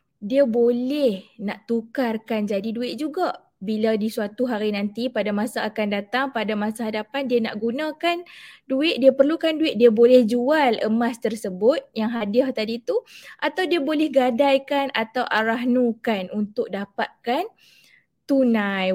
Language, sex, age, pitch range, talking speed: Malay, female, 20-39, 220-280 Hz, 140 wpm